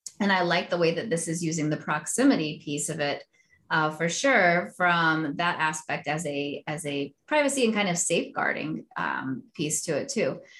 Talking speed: 185 wpm